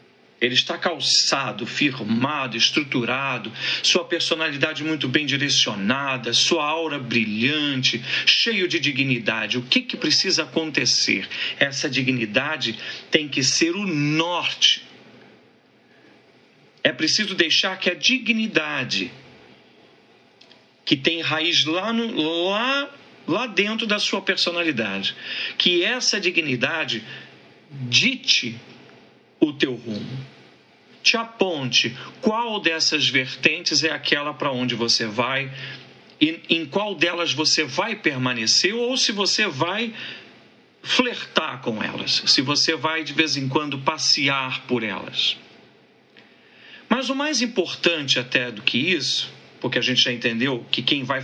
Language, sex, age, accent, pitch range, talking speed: Portuguese, male, 50-69, Brazilian, 130-180 Hz, 120 wpm